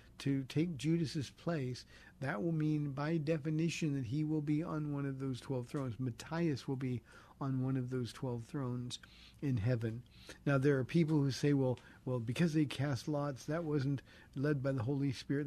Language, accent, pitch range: English, American, 135-165 Hz